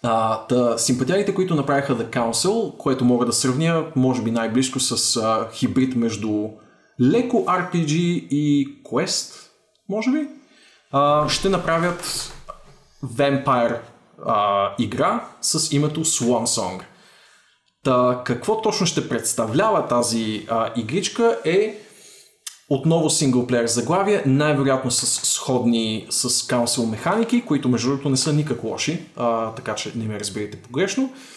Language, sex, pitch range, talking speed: Bulgarian, male, 120-170 Hz, 120 wpm